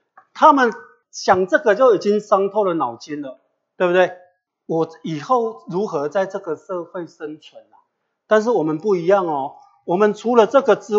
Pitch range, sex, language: 155-210 Hz, male, Chinese